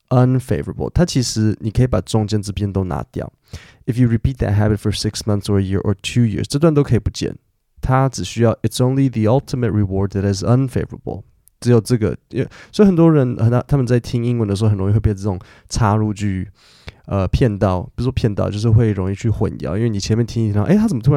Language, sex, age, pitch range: Chinese, male, 20-39, 100-125 Hz